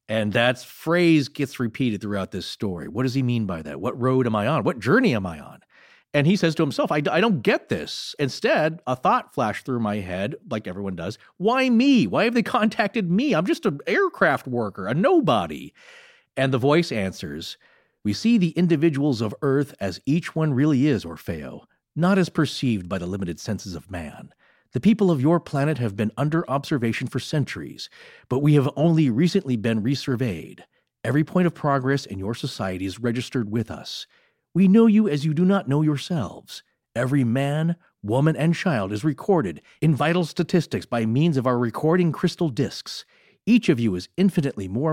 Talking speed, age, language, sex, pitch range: 190 wpm, 40-59, English, male, 120-170 Hz